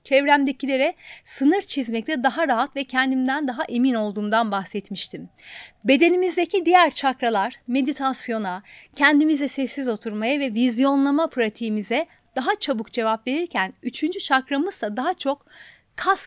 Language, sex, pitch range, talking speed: Turkish, female, 240-300 Hz, 115 wpm